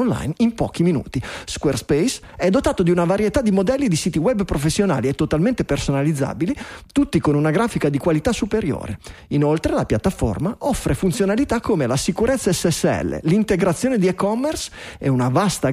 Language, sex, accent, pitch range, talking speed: Italian, male, native, 150-235 Hz, 155 wpm